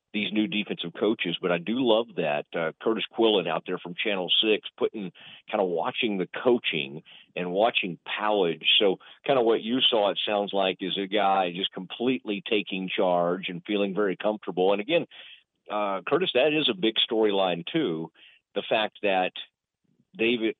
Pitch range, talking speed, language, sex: 95-115 Hz, 175 wpm, English, male